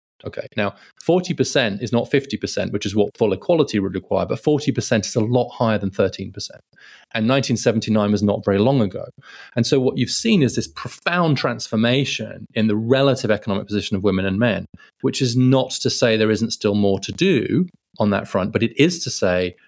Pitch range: 100-130 Hz